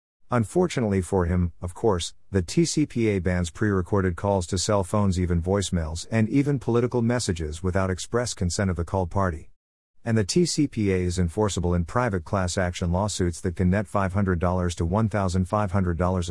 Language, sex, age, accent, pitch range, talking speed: English, male, 50-69, American, 90-115 Hz, 155 wpm